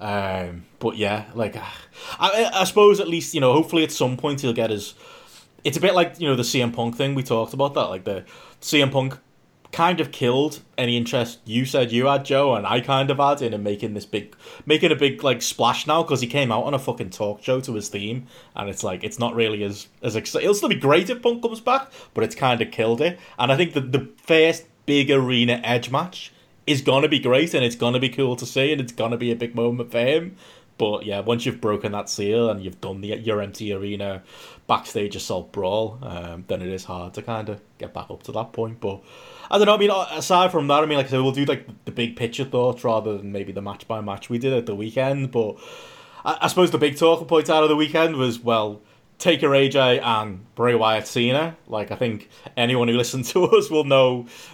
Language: English